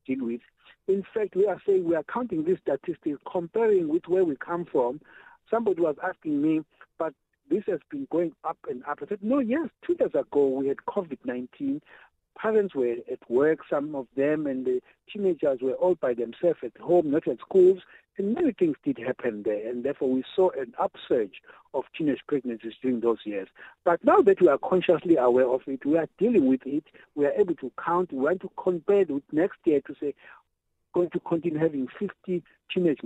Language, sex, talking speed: English, male, 205 wpm